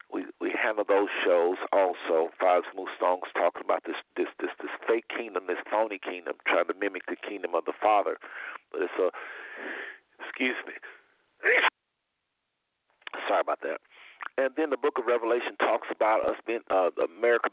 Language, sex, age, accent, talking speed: English, male, 50-69, American, 160 wpm